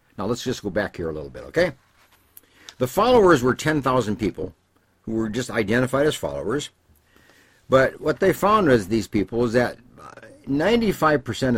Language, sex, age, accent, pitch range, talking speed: English, male, 60-79, American, 95-125 Hz, 160 wpm